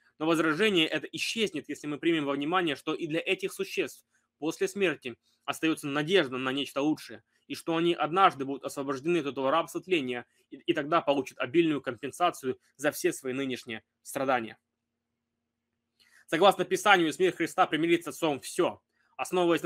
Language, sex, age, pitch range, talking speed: Russian, male, 20-39, 135-170 Hz, 150 wpm